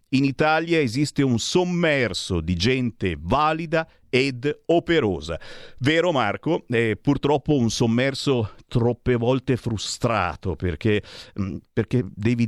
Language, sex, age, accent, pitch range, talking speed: Italian, male, 50-69, native, 100-160 Hz, 115 wpm